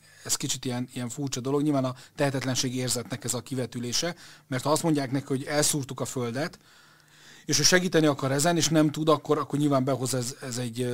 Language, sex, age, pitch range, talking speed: Hungarian, male, 30-49, 125-150 Hz, 205 wpm